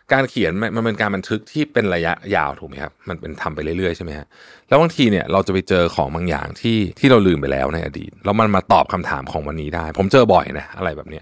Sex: male